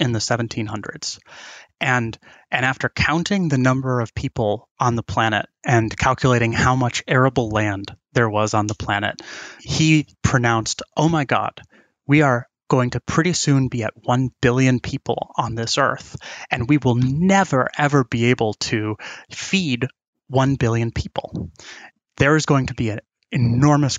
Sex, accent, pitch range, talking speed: male, American, 115-145 Hz, 160 wpm